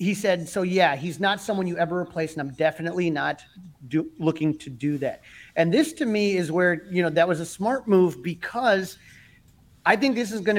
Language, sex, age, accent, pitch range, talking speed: English, male, 30-49, American, 160-195 Hz, 215 wpm